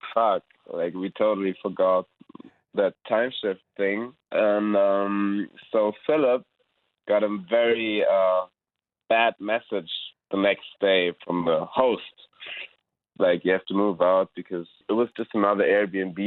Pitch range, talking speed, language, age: 95-110 Hz, 135 wpm, English, 20-39